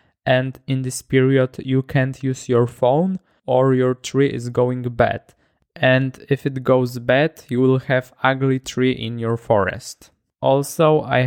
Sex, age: male, 20-39